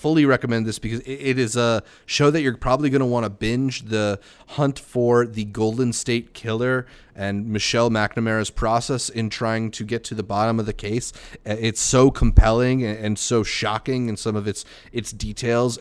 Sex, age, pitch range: male, 30-49, 105-125 Hz